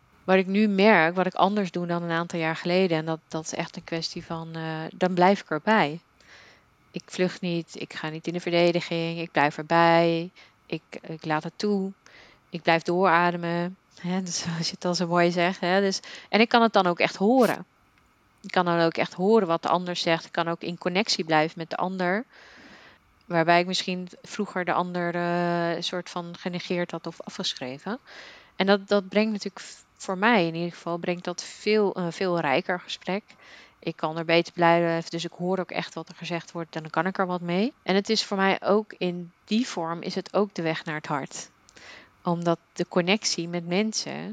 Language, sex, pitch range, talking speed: Dutch, female, 165-190 Hz, 205 wpm